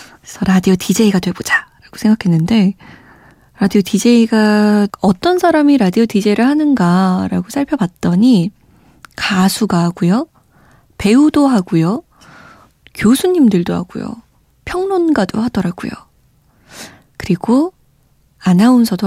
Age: 20-39